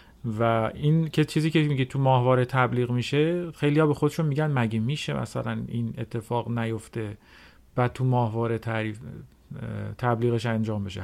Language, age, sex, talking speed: Persian, 40-59, male, 140 wpm